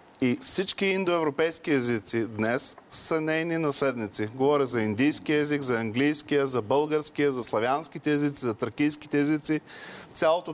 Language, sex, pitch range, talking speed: Bulgarian, male, 130-155 Hz, 130 wpm